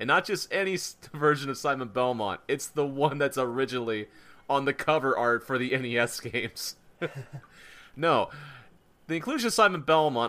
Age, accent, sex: 30-49, American, male